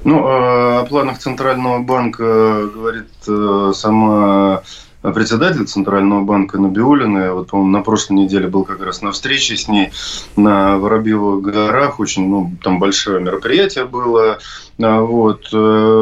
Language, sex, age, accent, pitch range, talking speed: Russian, male, 20-39, native, 105-125 Hz, 125 wpm